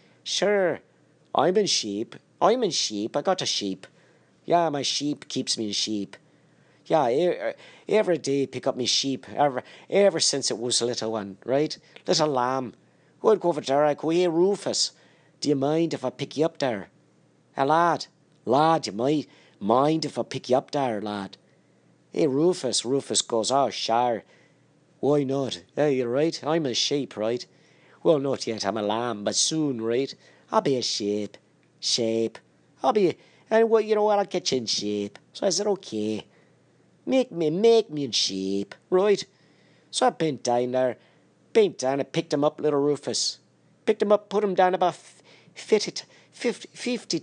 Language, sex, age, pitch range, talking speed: English, male, 40-59, 115-165 Hz, 180 wpm